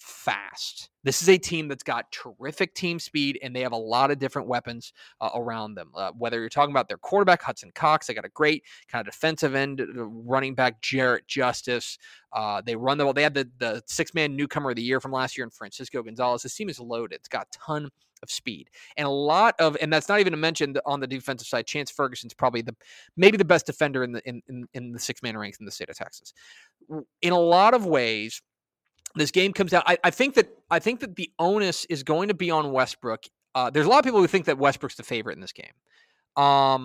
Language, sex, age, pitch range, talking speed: English, male, 30-49, 125-165 Hz, 245 wpm